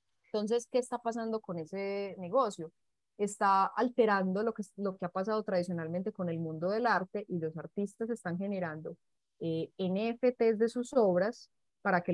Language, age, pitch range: Spanish, 20-39, 175-215 Hz